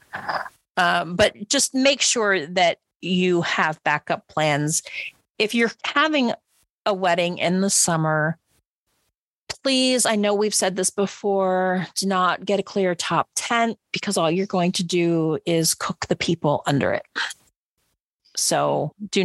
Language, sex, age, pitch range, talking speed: English, female, 40-59, 170-205 Hz, 145 wpm